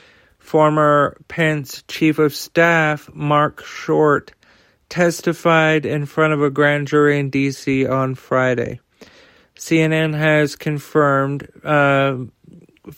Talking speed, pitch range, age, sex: 100 wpm, 135-155 Hz, 40-59, male